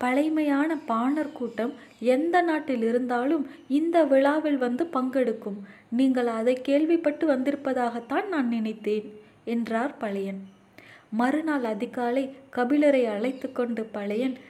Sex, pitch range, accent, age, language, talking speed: female, 230-285 Hz, native, 20-39, Tamil, 95 wpm